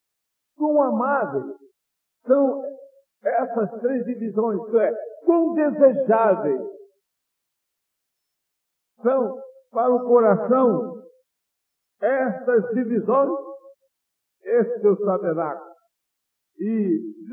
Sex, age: male, 50-69